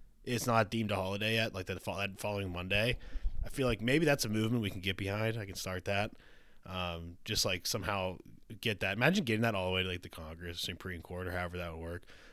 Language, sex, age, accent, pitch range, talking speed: English, male, 20-39, American, 90-120 Hz, 235 wpm